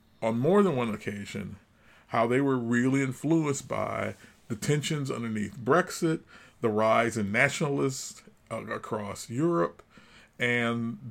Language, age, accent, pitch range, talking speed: English, 40-59, American, 110-140 Hz, 125 wpm